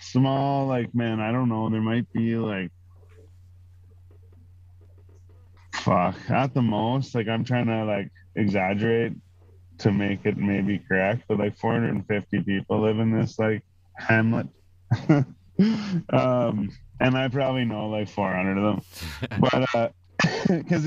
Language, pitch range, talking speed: English, 100-130 Hz, 130 wpm